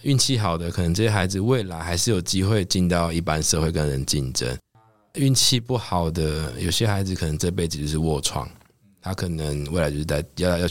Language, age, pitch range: Chinese, 20-39, 75-100 Hz